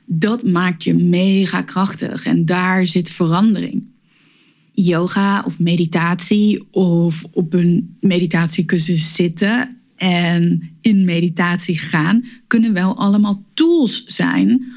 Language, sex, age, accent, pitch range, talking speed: Dutch, female, 20-39, Dutch, 175-205 Hz, 105 wpm